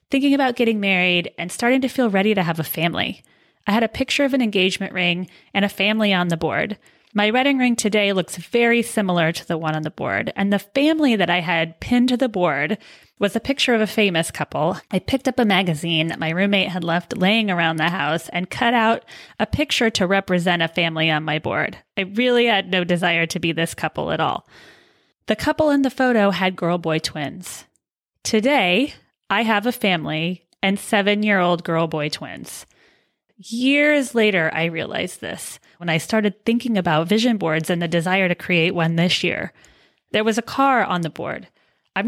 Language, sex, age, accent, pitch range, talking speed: English, female, 30-49, American, 175-230 Hz, 200 wpm